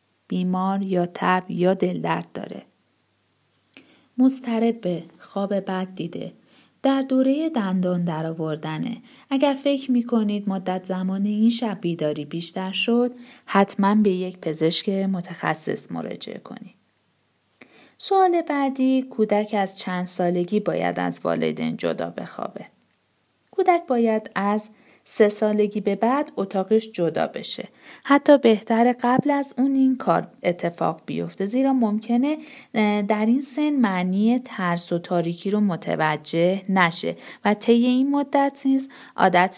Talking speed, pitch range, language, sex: 120 wpm, 180-255 Hz, Persian, female